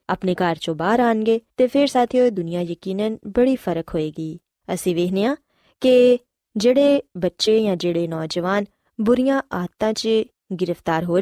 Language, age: Punjabi, 20-39